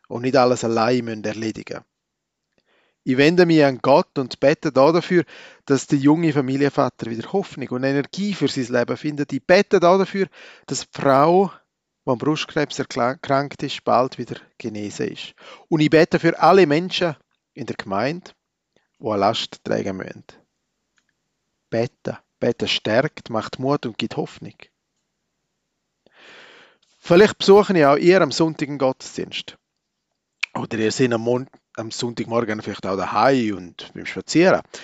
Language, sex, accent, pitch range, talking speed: German, male, Austrian, 120-165 Hz, 140 wpm